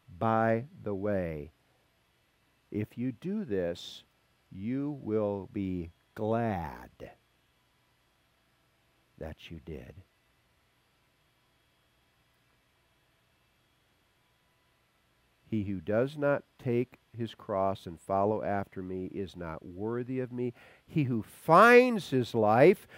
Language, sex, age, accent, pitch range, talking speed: English, male, 50-69, American, 120-180 Hz, 90 wpm